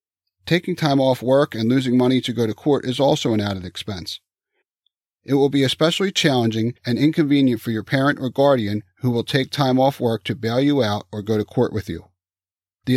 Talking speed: 210 wpm